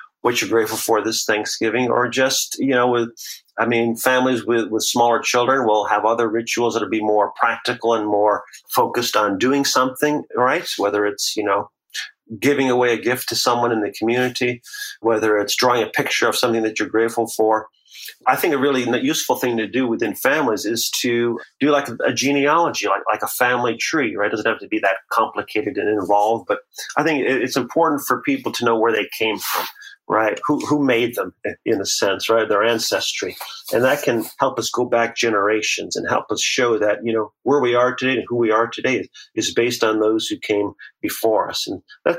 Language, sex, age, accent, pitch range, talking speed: English, male, 40-59, American, 110-130 Hz, 210 wpm